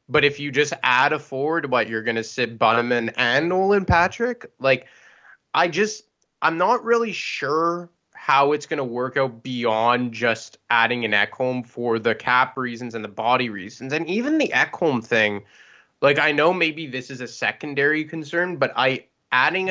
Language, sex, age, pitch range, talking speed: English, male, 20-39, 115-145 Hz, 185 wpm